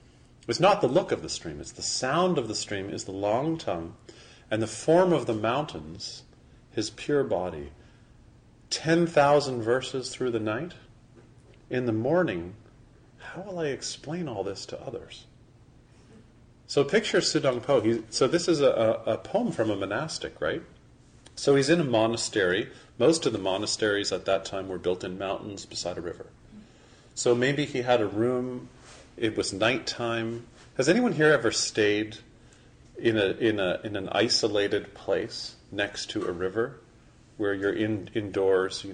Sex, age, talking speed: male, 40-59, 160 wpm